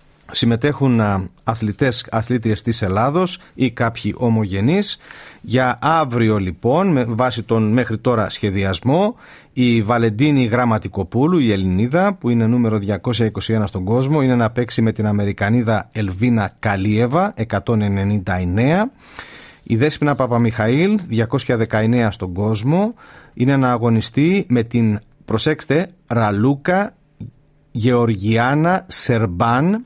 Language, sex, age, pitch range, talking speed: Greek, male, 40-59, 110-140 Hz, 105 wpm